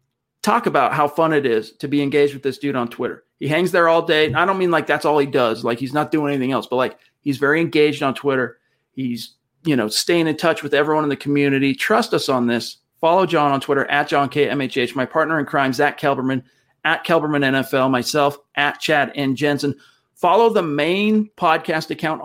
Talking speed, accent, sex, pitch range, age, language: 225 wpm, American, male, 135-155 Hz, 40-59, English